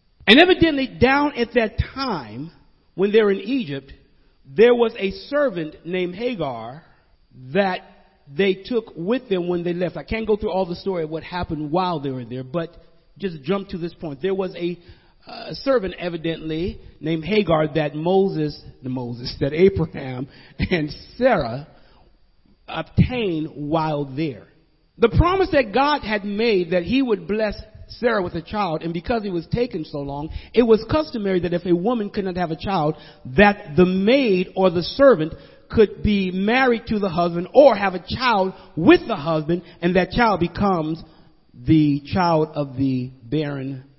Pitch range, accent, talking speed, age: 145-210 Hz, American, 170 wpm, 50-69